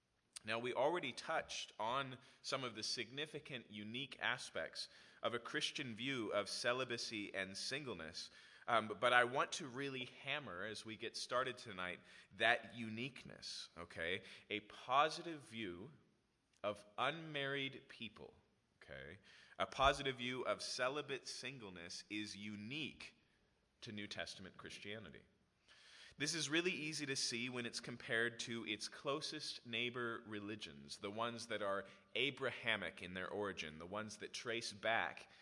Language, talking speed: English, 135 wpm